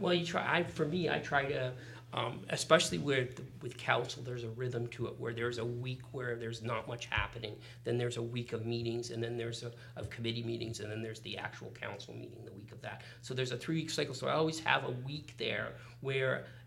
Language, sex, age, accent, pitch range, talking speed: English, male, 40-59, American, 115-130 Hz, 220 wpm